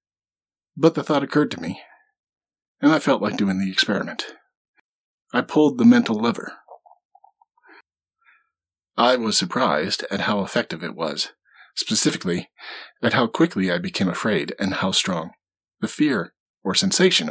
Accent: American